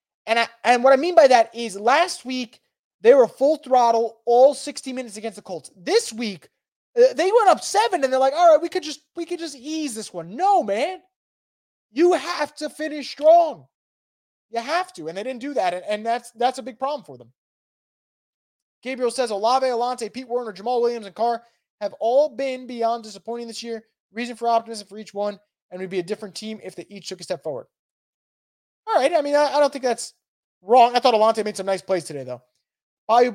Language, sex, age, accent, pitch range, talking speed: English, male, 20-39, American, 205-265 Hz, 220 wpm